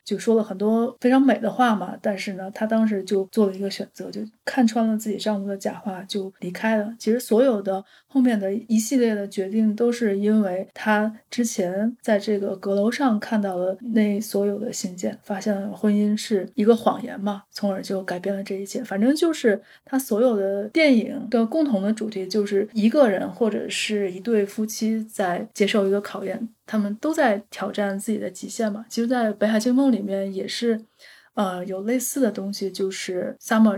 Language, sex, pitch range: Chinese, female, 200-235 Hz